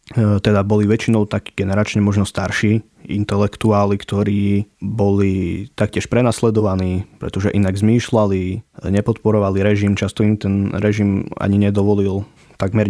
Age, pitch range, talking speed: 20-39, 100-110 Hz, 110 wpm